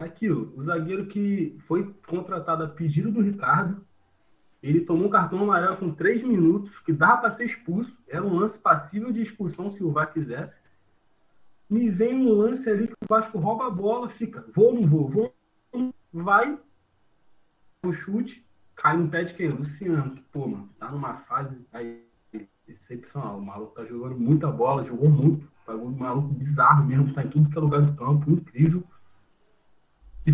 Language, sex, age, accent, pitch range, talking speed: Portuguese, male, 20-39, Brazilian, 140-200 Hz, 175 wpm